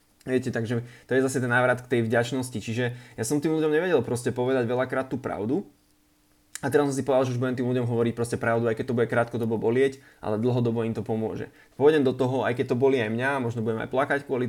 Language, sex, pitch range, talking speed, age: Slovak, male, 115-130 Hz, 245 wpm, 20-39